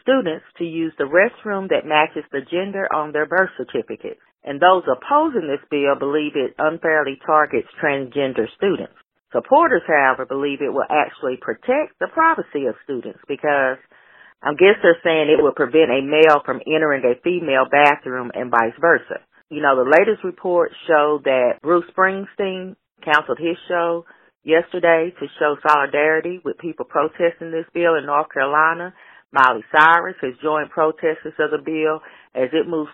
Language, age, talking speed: English, 40-59, 160 wpm